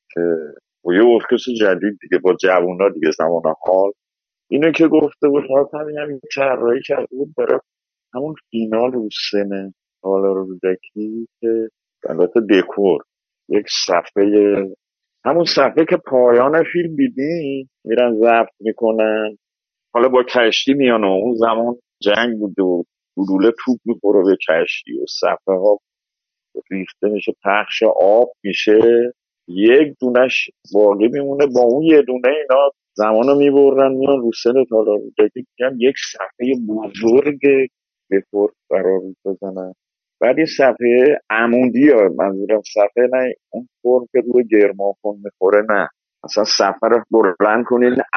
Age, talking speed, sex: 50-69, 130 wpm, male